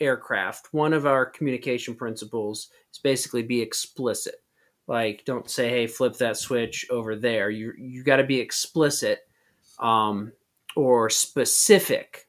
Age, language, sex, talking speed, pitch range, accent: 30-49, English, male, 135 wpm, 115-140 Hz, American